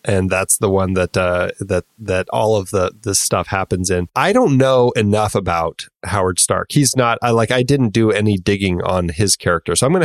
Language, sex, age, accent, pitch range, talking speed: English, male, 30-49, American, 90-110 Hz, 220 wpm